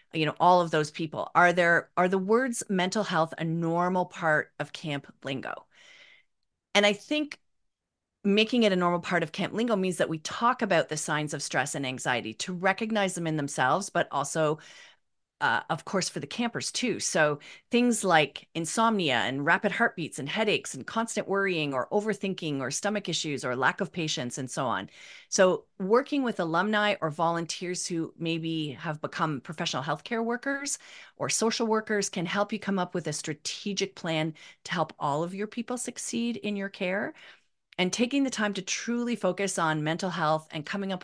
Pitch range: 160-210 Hz